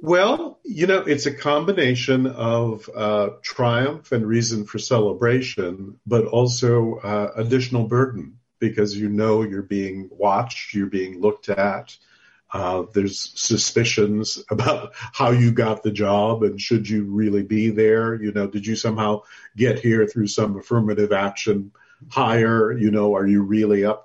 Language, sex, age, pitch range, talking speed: English, male, 50-69, 105-120 Hz, 150 wpm